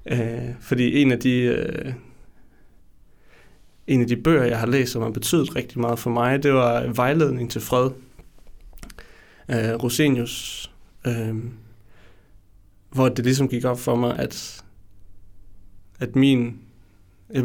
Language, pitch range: Danish, 115-135 Hz